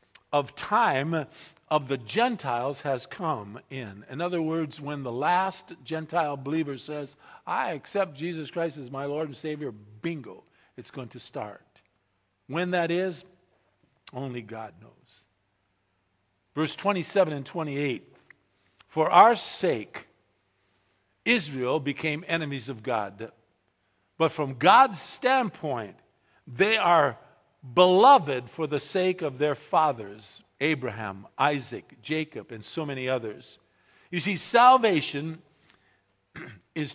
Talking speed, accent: 120 wpm, American